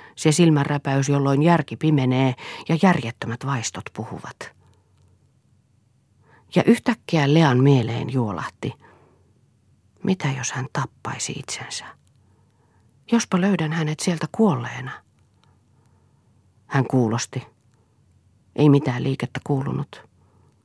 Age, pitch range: 40-59, 115-140 Hz